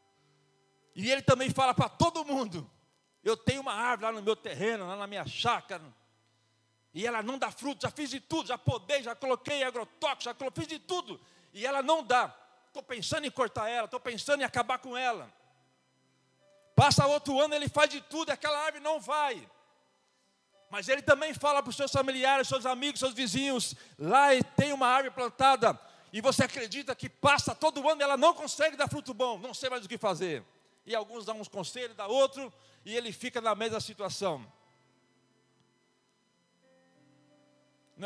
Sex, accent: male, Brazilian